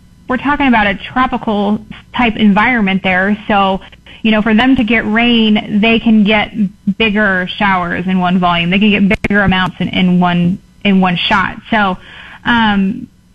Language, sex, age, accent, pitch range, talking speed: English, female, 20-39, American, 205-260 Hz, 160 wpm